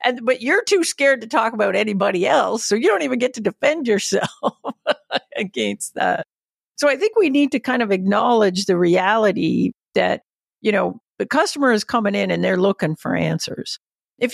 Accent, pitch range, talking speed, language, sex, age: American, 185-255 Hz, 190 wpm, English, female, 50-69